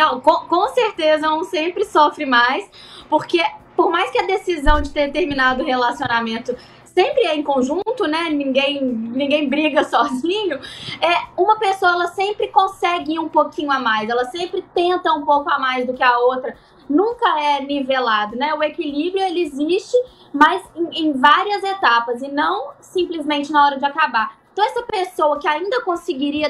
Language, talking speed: Portuguese, 170 wpm